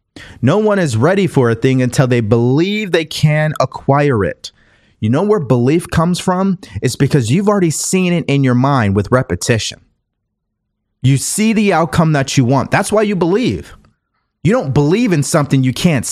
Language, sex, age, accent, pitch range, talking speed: English, male, 30-49, American, 110-160 Hz, 180 wpm